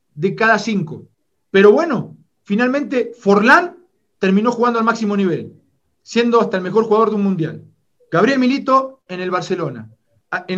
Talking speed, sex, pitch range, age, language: 145 wpm, male, 165-230 Hz, 40-59, Spanish